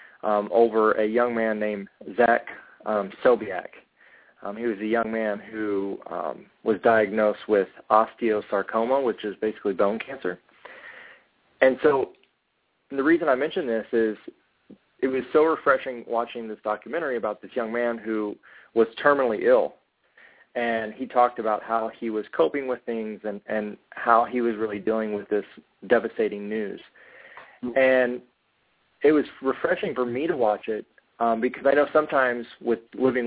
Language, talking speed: English, 155 wpm